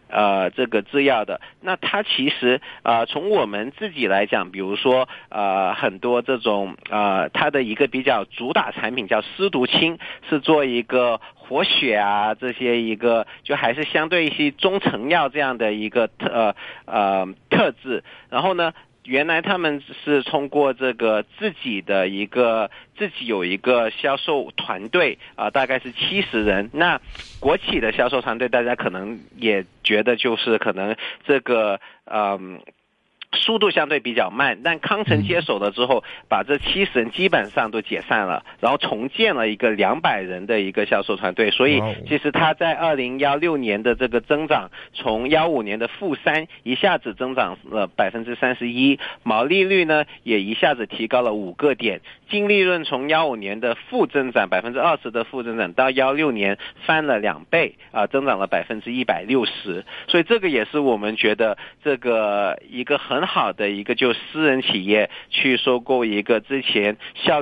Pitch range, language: 110-145 Hz, Chinese